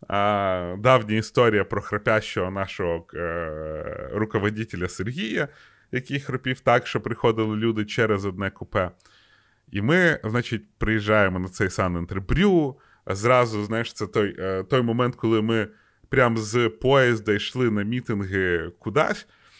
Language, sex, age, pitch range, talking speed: Ukrainian, male, 30-49, 100-130 Hz, 120 wpm